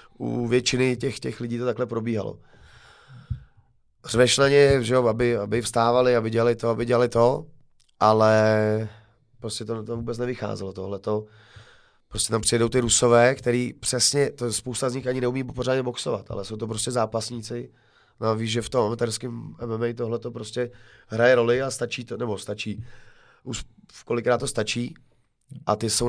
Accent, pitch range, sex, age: native, 115-130 Hz, male, 30-49